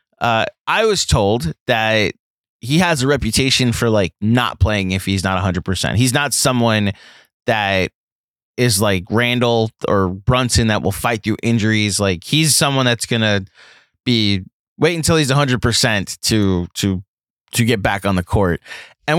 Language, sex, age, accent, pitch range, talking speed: English, male, 20-39, American, 105-140 Hz, 170 wpm